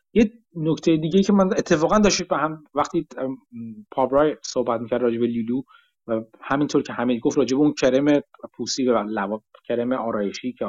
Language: Persian